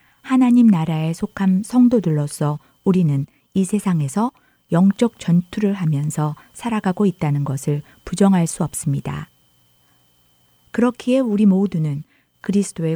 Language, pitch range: Korean, 140-205 Hz